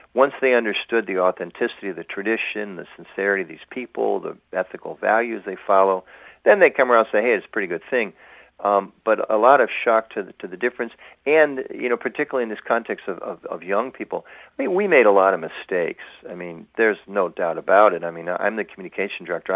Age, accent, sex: 50-69, American, male